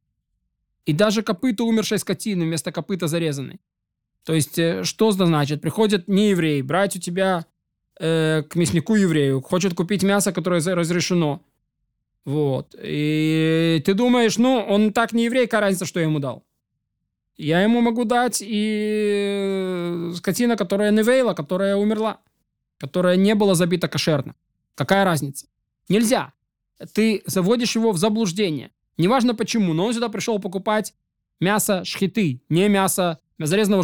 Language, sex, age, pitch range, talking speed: Russian, male, 20-39, 165-215 Hz, 140 wpm